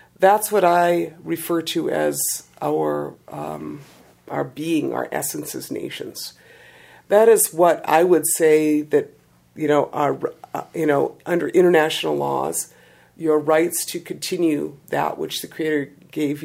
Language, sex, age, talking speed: English, female, 50-69, 140 wpm